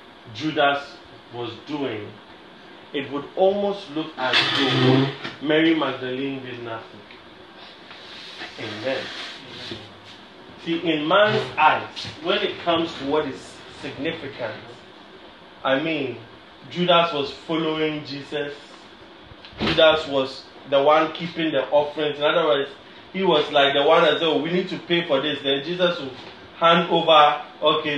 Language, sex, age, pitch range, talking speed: English, male, 30-49, 140-175 Hz, 130 wpm